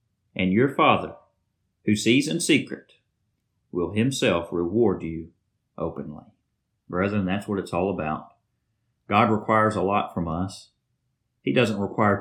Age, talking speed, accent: 40-59, 135 wpm, American